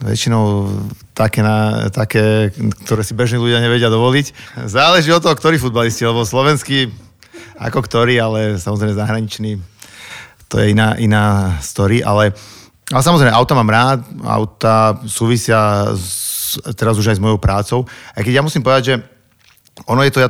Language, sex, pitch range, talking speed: Slovak, male, 105-120 Hz, 150 wpm